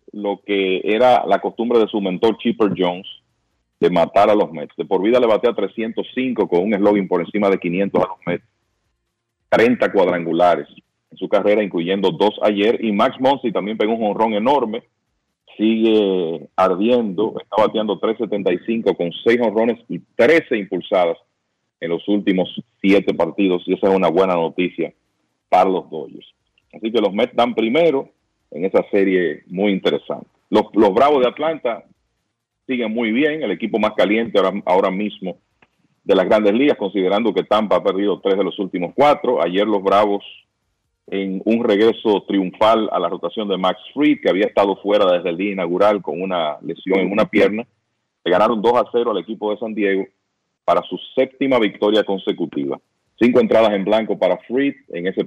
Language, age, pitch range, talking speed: Spanish, 40-59, 95-115 Hz, 175 wpm